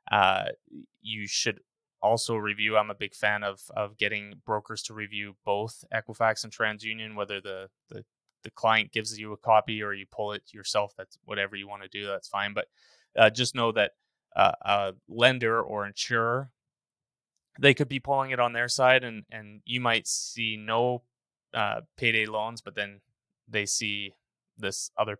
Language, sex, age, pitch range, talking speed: English, male, 20-39, 105-120 Hz, 175 wpm